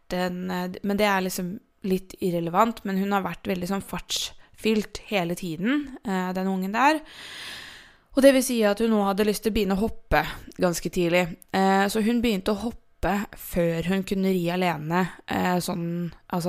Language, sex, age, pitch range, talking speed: English, female, 20-39, 185-210 Hz, 165 wpm